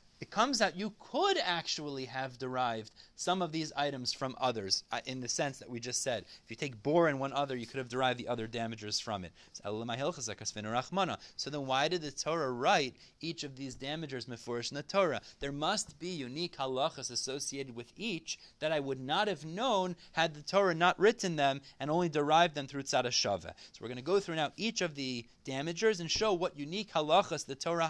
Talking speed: 205 wpm